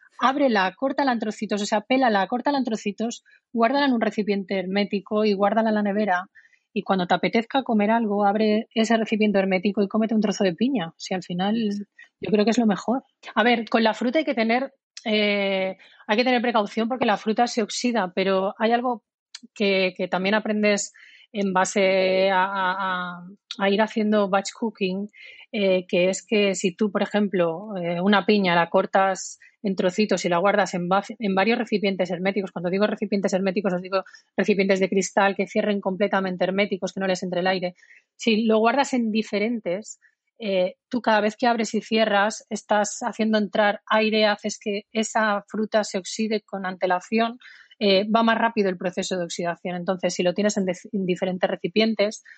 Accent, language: Spanish, Spanish